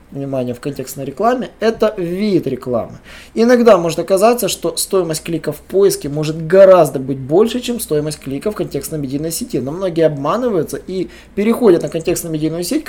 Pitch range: 150-200 Hz